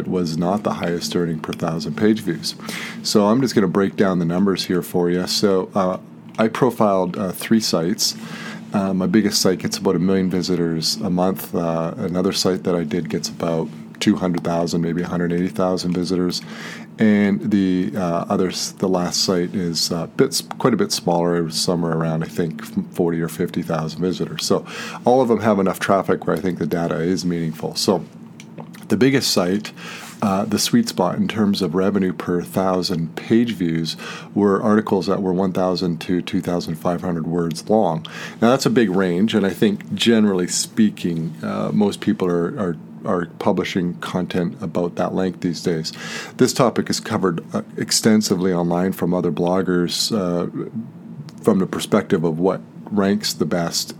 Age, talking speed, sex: 40-59, 170 wpm, male